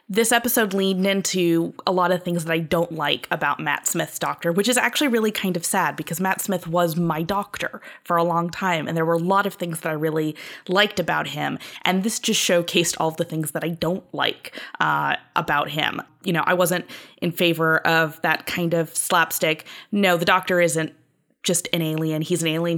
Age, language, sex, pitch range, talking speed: 20-39, English, female, 165-205 Hz, 215 wpm